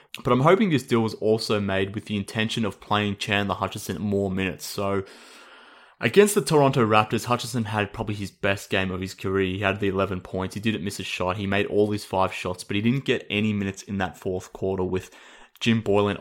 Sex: male